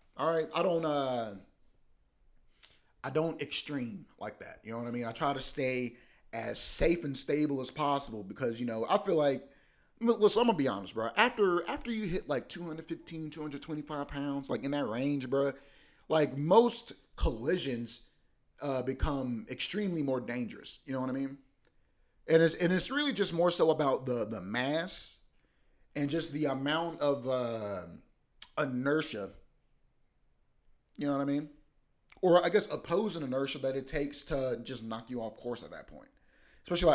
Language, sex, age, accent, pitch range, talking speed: English, male, 30-49, American, 125-160 Hz, 170 wpm